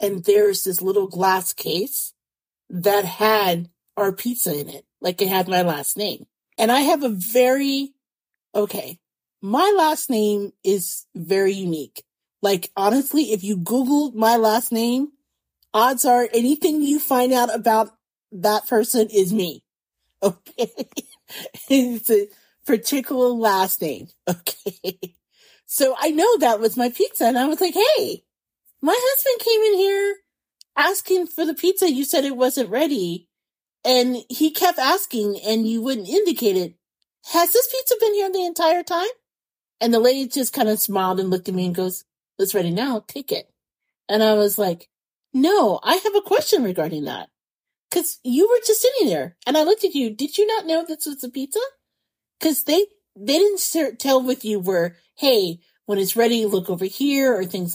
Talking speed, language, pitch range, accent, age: 170 wpm, English, 200-315 Hz, American, 40-59